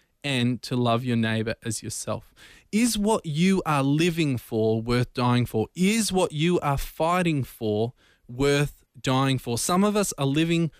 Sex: male